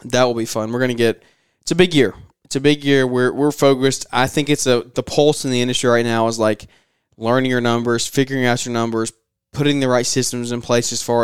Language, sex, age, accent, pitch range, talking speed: English, male, 20-39, American, 115-130 Hz, 250 wpm